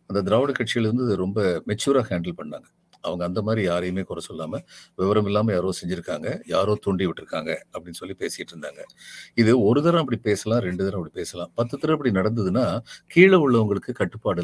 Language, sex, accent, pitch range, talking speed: Tamil, male, native, 95-130 Hz, 170 wpm